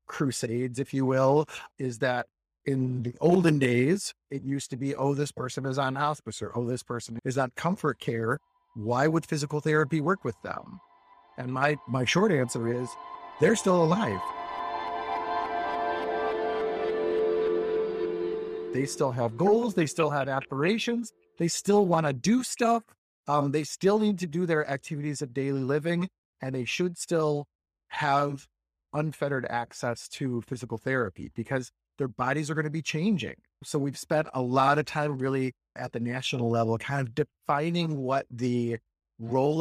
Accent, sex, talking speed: American, male, 160 wpm